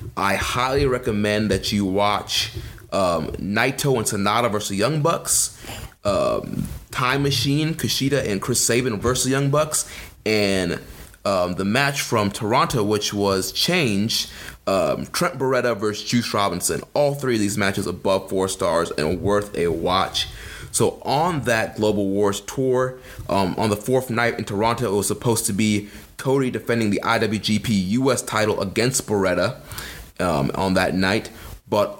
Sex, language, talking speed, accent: male, English, 150 wpm, American